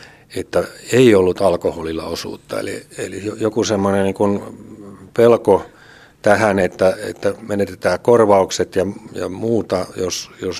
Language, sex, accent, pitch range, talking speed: Finnish, male, native, 90-105 Hz, 120 wpm